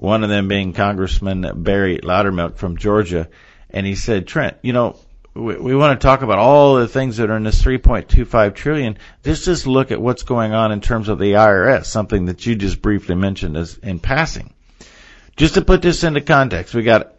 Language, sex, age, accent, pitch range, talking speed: English, male, 50-69, American, 100-130 Hz, 220 wpm